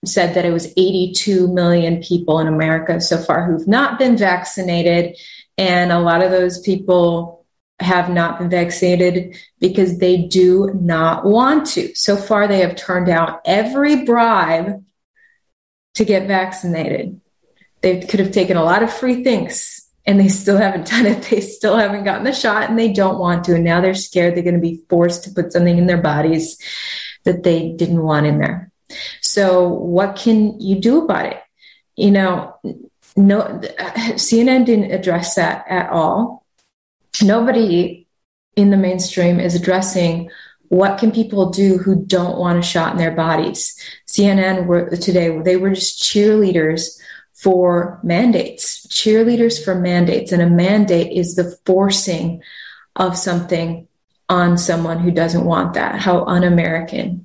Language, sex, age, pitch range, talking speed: English, female, 30-49, 175-200 Hz, 155 wpm